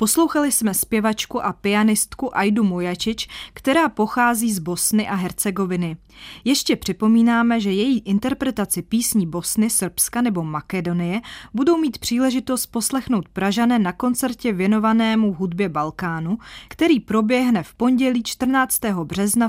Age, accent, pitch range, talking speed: 20-39, native, 190-235 Hz, 120 wpm